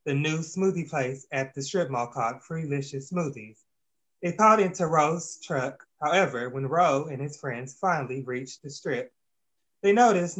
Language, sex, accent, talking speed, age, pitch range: English, male, American, 160 wpm, 20-39, 130-180 Hz